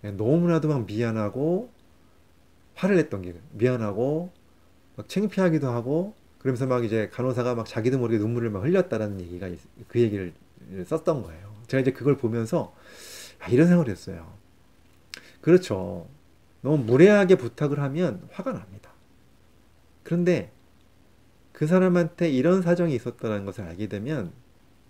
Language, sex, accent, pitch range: Korean, male, native, 105-170 Hz